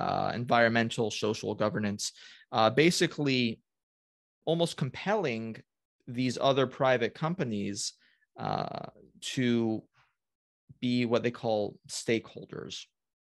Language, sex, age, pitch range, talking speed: English, male, 30-49, 115-150 Hz, 85 wpm